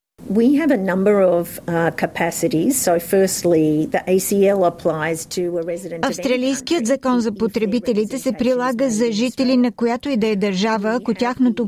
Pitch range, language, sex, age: 210-245 Hz, Bulgarian, female, 50-69